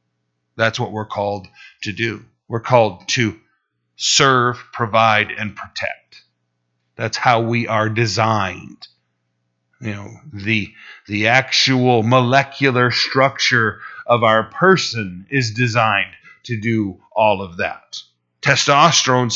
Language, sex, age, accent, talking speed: English, male, 40-59, American, 110 wpm